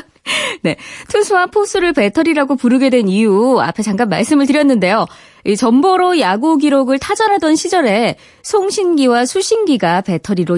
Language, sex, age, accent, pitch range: Korean, female, 20-39, native, 200-325 Hz